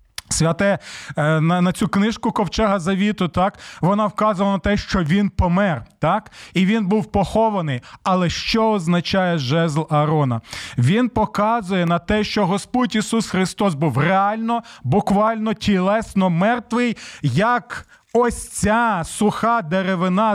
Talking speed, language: 125 wpm, Ukrainian